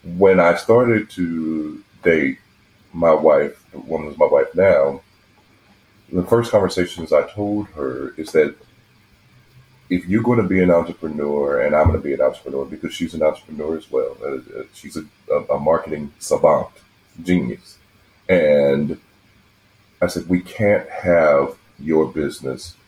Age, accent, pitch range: 40-59, American, 90-110 Hz